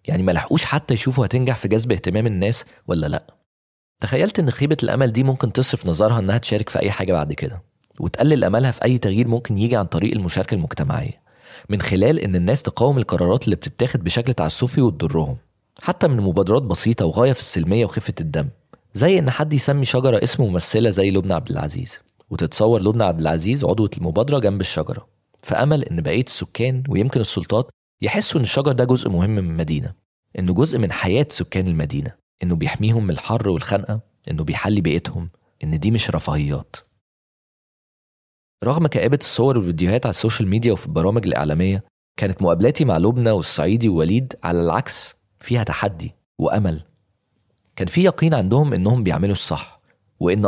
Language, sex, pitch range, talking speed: Arabic, male, 90-125 Hz, 165 wpm